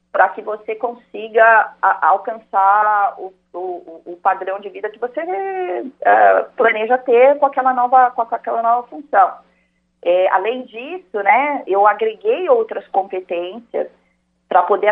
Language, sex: Portuguese, female